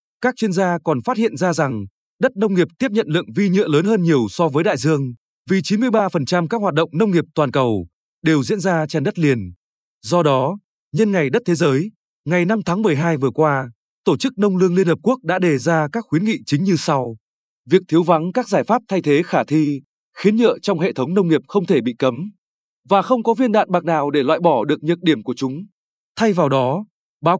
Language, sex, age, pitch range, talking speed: Vietnamese, male, 20-39, 150-200 Hz, 235 wpm